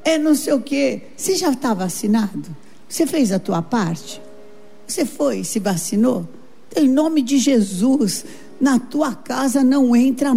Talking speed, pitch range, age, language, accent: 155 wpm, 235-300 Hz, 50-69, Portuguese, Brazilian